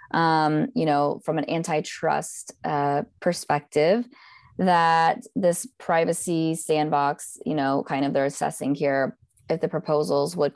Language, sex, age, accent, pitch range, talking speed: English, female, 20-39, American, 145-175 Hz, 130 wpm